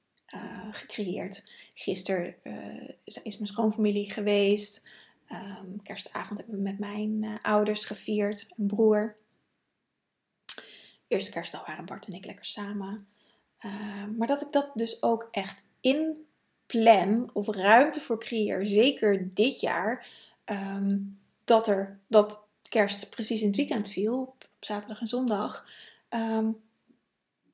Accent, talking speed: Dutch, 130 wpm